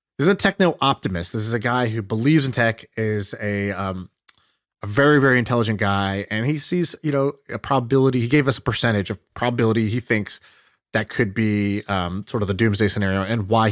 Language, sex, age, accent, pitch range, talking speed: English, male, 30-49, American, 100-135 Hz, 210 wpm